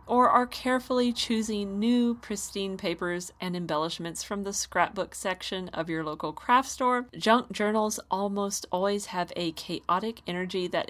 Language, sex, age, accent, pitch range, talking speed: English, female, 40-59, American, 180-230 Hz, 150 wpm